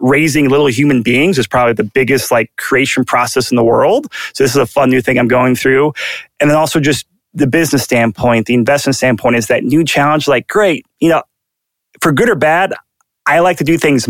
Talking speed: 215 wpm